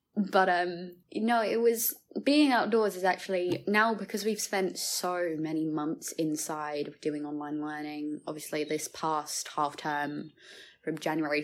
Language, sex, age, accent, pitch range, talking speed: English, female, 20-39, British, 150-190 Hz, 145 wpm